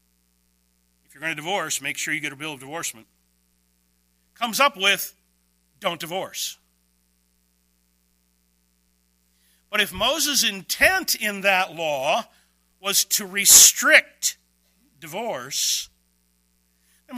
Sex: male